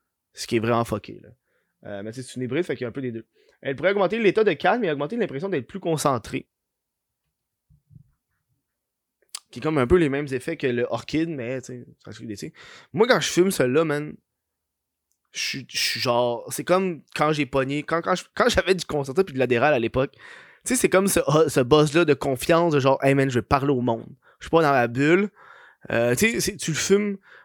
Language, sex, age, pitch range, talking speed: French, male, 20-39, 130-180 Hz, 235 wpm